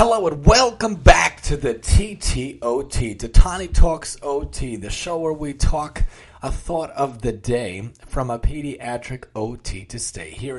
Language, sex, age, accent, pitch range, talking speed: English, male, 30-49, American, 115-145 Hz, 155 wpm